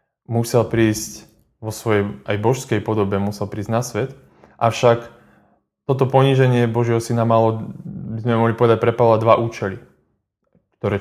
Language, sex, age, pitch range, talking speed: Slovak, male, 20-39, 105-125 Hz, 135 wpm